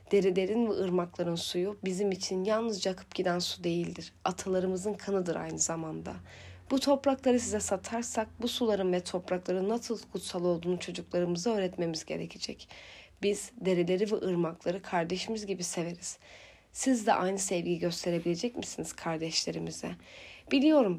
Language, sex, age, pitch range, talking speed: Turkish, female, 30-49, 175-205 Hz, 125 wpm